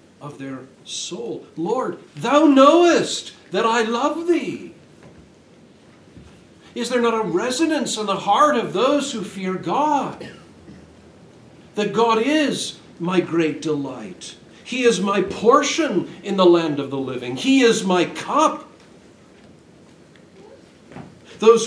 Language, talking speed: English, 120 wpm